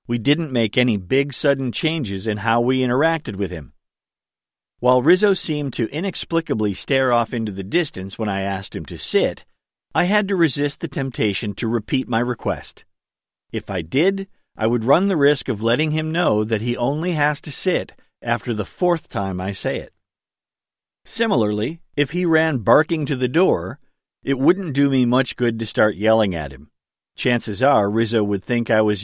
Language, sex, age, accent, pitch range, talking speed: English, male, 50-69, American, 105-145 Hz, 185 wpm